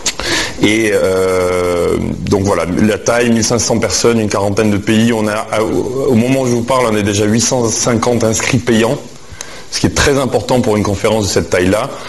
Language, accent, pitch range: French, French, 95-115 Hz